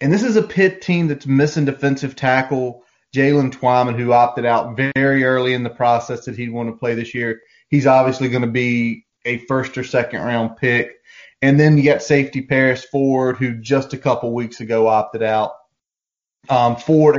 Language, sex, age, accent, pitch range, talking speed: English, male, 30-49, American, 115-140 Hz, 190 wpm